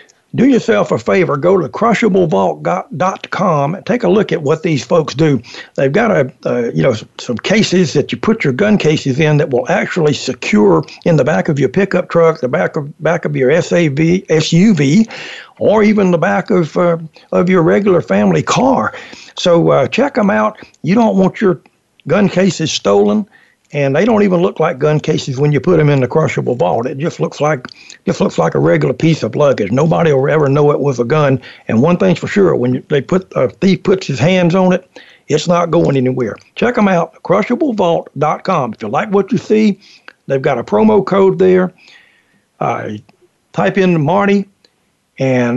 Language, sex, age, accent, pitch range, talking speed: English, male, 60-79, American, 145-195 Hz, 200 wpm